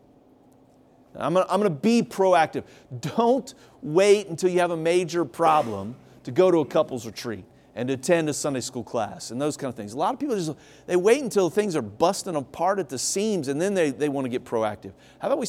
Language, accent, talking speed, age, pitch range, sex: English, American, 215 wpm, 40-59, 130-190 Hz, male